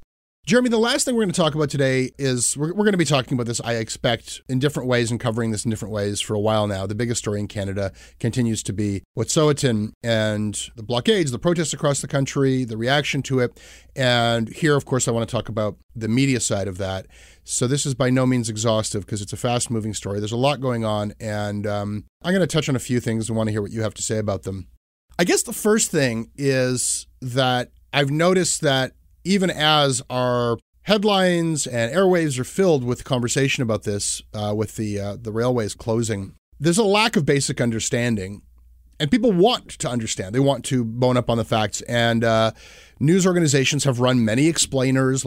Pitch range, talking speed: 110-145 Hz, 215 wpm